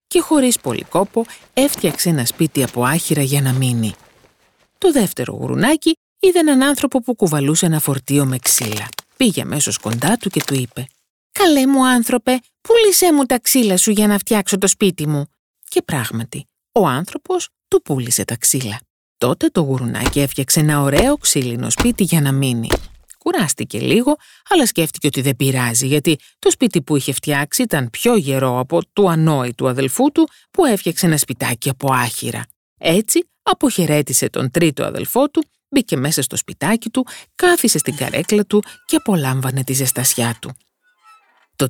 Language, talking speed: Greek, 160 wpm